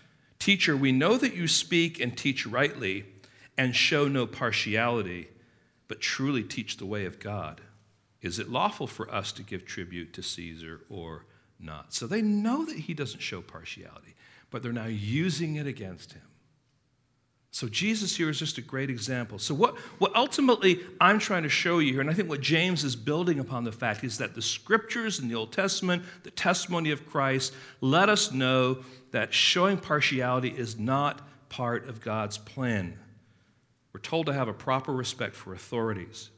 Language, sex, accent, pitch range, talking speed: English, male, American, 110-145 Hz, 180 wpm